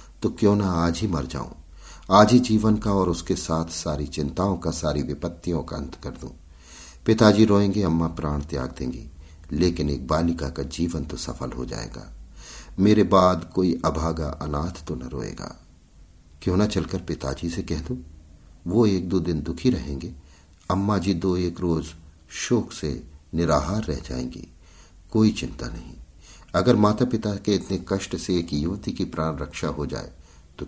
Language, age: Hindi, 50-69